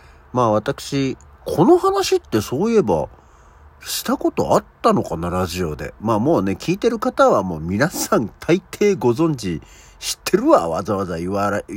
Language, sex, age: Japanese, male, 50-69